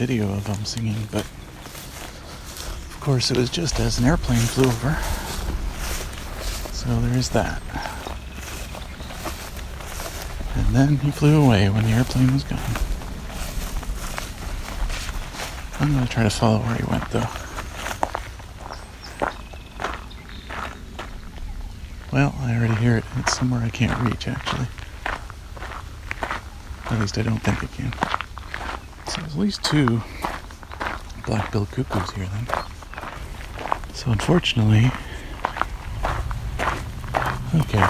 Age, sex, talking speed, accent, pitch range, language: 40-59, male, 110 wpm, American, 80-120 Hz, English